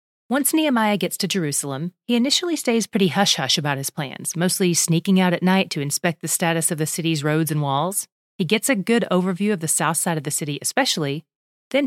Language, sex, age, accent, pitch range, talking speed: English, female, 30-49, American, 165-225 Hz, 210 wpm